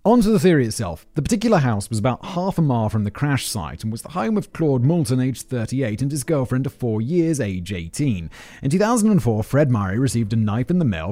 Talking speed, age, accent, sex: 230 wpm, 30-49, British, male